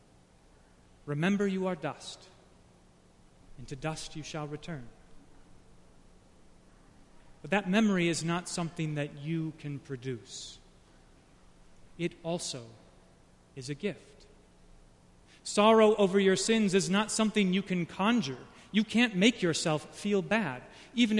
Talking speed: 120 wpm